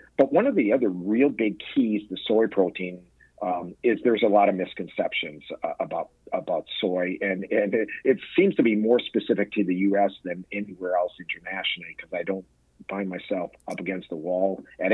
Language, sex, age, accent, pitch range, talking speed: English, male, 50-69, American, 95-110 Hz, 190 wpm